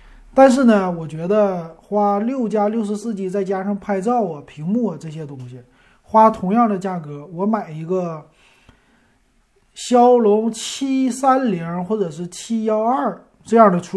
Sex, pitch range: male, 150-210 Hz